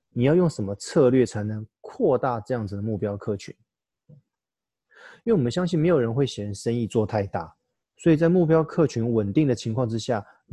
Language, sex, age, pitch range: Chinese, male, 30-49, 110-135 Hz